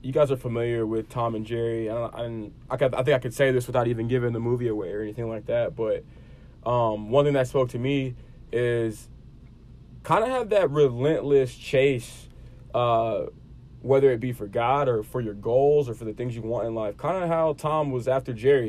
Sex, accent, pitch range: male, American, 125-155 Hz